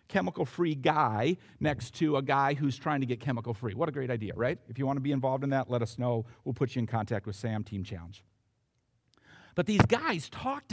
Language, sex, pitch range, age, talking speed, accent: English, male, 115-155 Hz, 50-69, 225 wpm, American